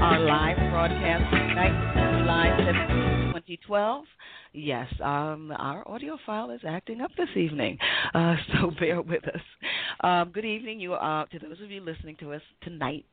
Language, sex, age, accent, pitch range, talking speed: English, female, 40-59, American, 135-175 Hz, 145 wpm